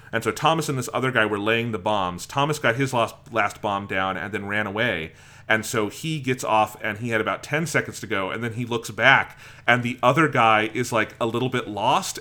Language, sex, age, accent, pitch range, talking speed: English, male, 30-49, American, 100-125 Hz, 245 wpm